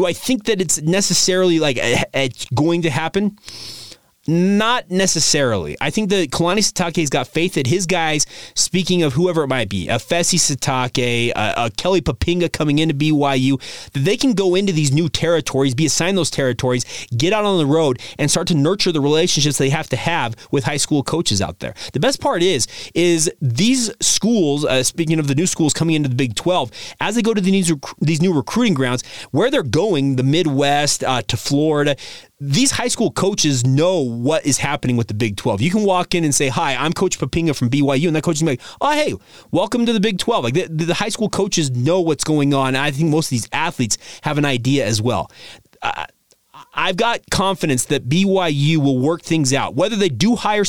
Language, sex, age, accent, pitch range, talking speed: English, male, 30-49, American, 135-180 Hz, 210 wpm